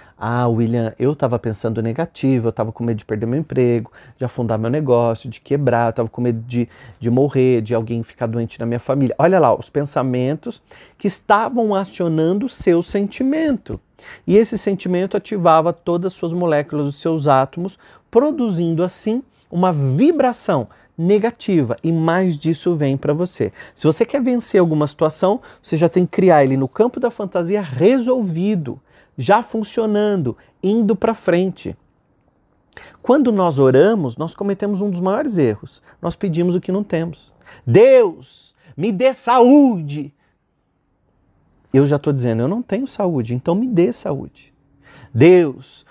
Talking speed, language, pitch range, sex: 155 wpm, Portuguese, 130-200 Hz, male